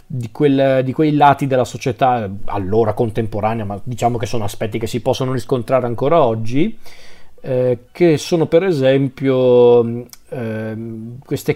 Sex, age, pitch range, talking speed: male, 40-59, 120-140 Hz, 135 wpm